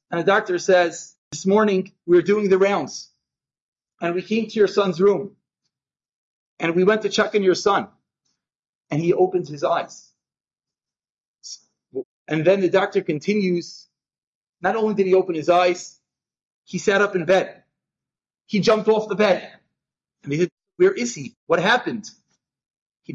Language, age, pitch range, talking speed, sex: English, 30-49, 150-195 Hz, 160 wpm, male